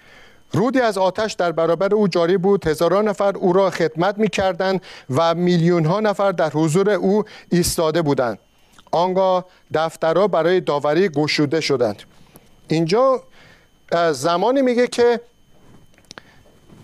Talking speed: 115 wpm